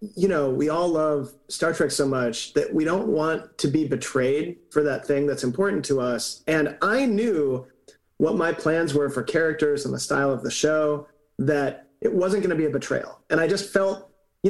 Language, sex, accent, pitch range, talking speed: English, male, American, 135-160 Hz, 210 wpm